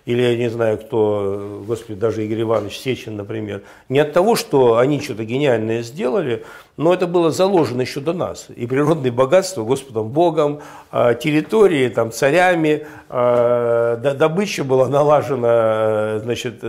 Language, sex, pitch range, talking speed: Russian, male, 120-160 Hz, 135 wpm